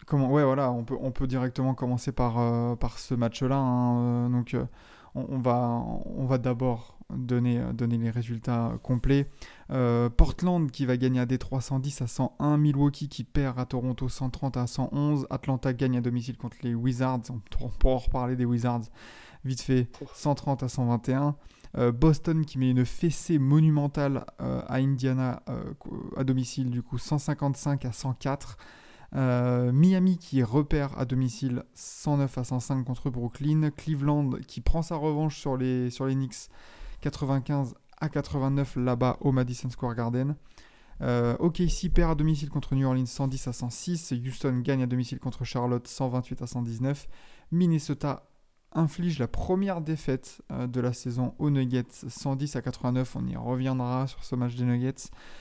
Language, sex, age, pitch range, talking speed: French, male, 20-39, 125-140 Hz, 165 wpm